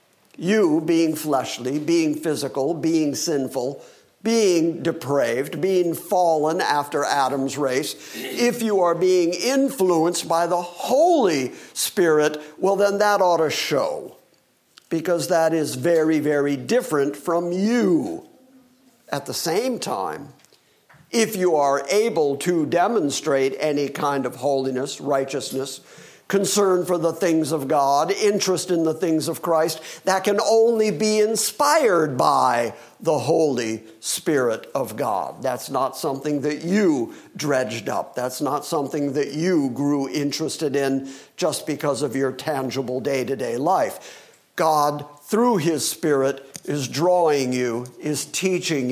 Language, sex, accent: English, male, American